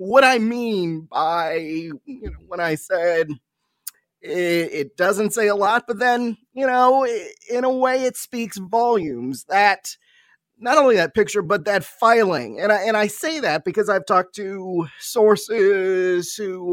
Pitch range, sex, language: 175-230 Hz, male, English